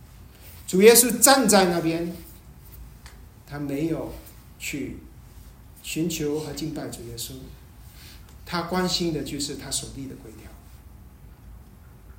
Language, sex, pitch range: Chinese, male, 140-215 Hz